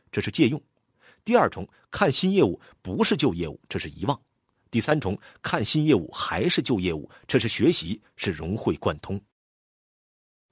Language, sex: Chinese, male